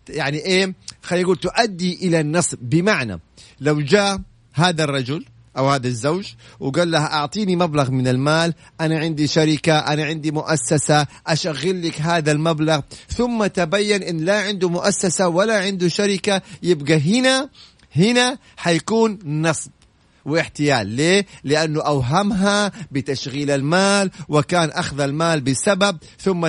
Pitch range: 150-185 Hz